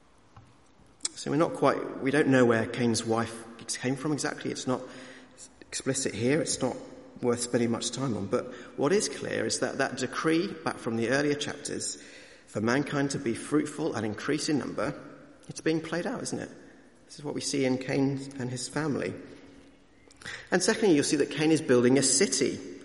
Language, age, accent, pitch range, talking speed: English, 40-59, British, 115-145 Hz, 190 wpm